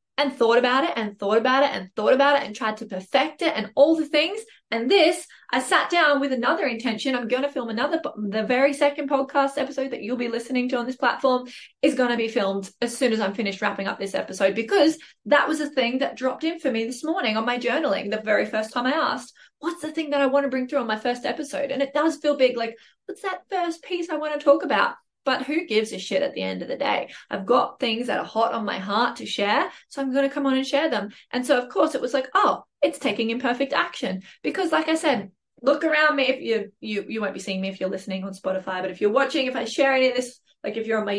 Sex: female